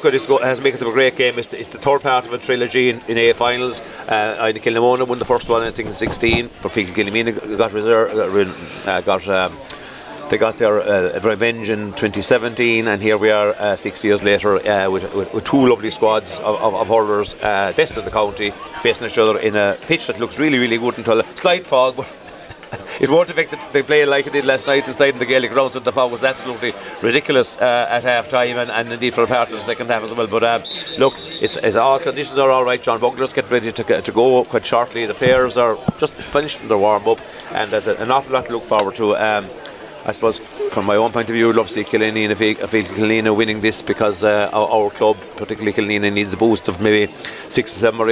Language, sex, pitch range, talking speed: English, male, 110-130 Hz, 240 wpm